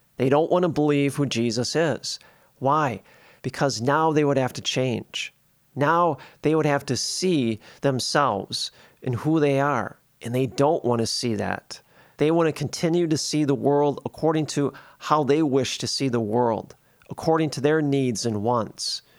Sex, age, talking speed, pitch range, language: male, 40-59, 180 wpm, 125-160 Hz, English